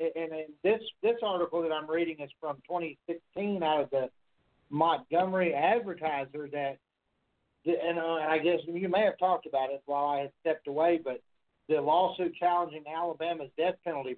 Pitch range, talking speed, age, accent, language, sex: 155-185 Hz, 155 wpm, 50-69, American, English, male